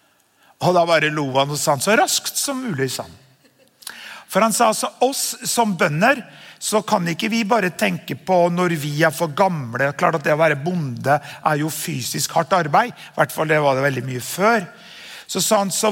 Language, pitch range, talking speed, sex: English, 155-210 Hz, 205 wpm, male